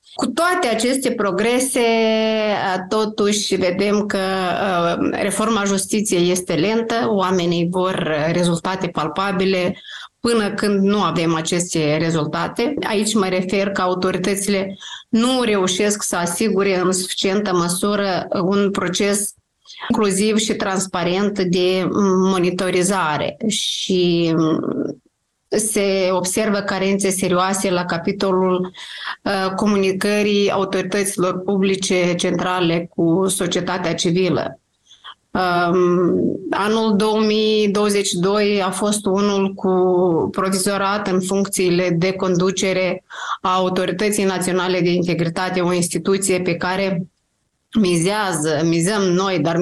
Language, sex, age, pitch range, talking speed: Romanian, female, 20-39, 180-205 Hz, 95 wpm